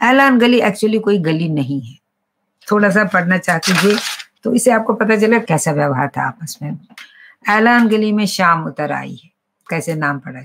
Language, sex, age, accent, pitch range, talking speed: Hindi, female, 50-69, native, 155-200 Hz, 130 wpm